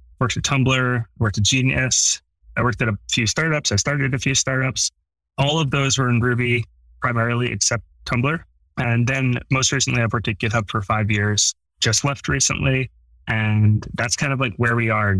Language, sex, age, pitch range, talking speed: English, male, 20-39, 105-130 Hz, 190 wpm